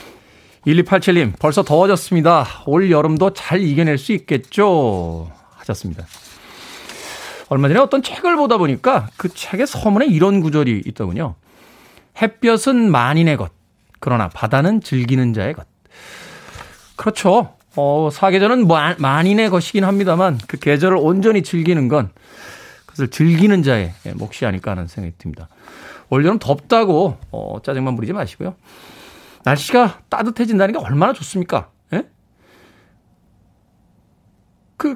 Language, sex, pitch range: Korean, male, 125-185 Hz